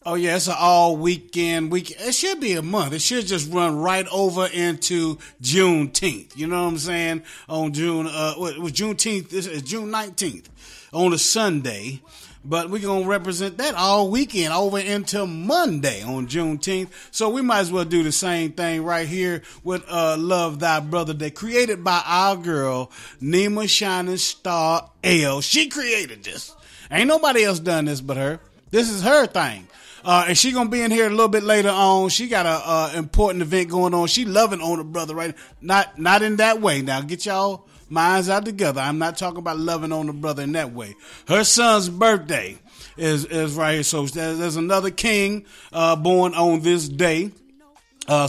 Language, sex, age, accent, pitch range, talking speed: English, male, 30-49, American, 160-200 Hz, 195 wpm